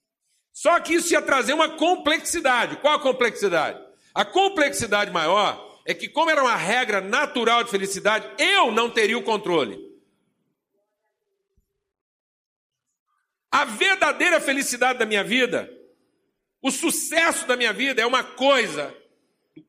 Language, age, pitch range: Portuguese, 60-79, 255-320 Hz